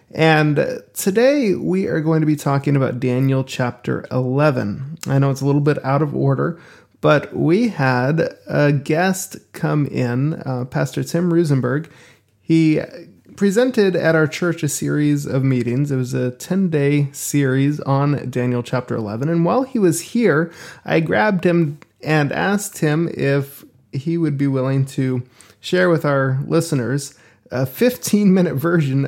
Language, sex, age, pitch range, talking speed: English, male, 20-39, 130-160 Hz, 155 wpm